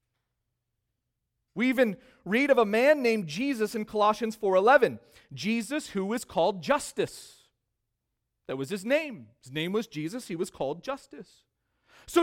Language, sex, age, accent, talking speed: English, male, 40-59, American, 140 wpm